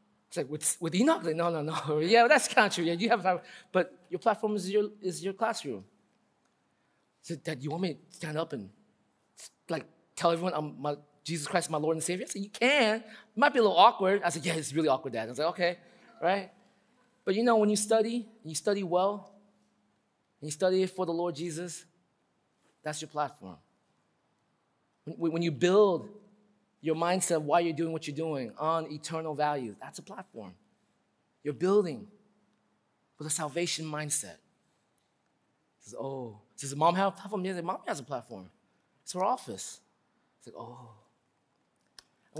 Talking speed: 190 wpm